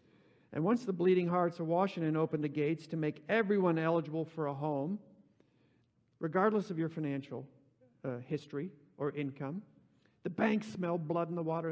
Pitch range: 135-175 Hz